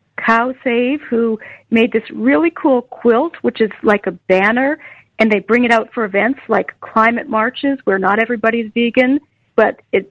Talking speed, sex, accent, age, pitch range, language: 170 wpm, female, American, 50-69, 210-255 Hz, English